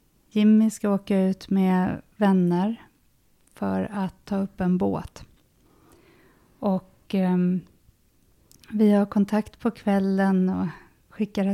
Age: 30-49